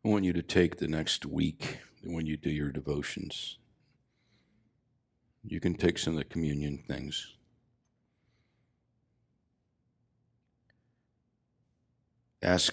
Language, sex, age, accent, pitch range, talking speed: English, male, 60-79, American, 75-115 Hz, 105 wpm